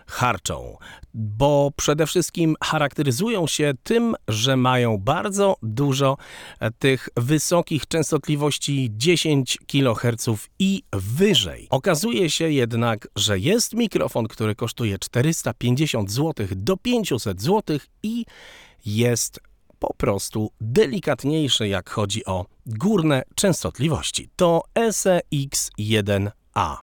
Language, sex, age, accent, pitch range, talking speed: Polish, male, 40-59, native, 120-160 Hz, 100 wpm